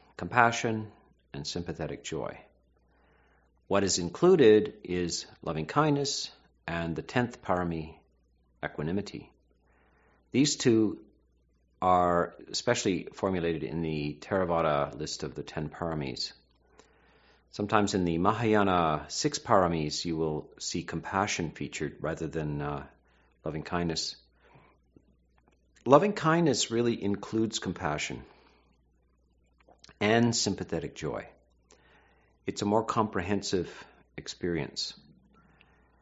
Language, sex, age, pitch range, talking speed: English, male, 50-69, 70-105 Hz, 90 wpm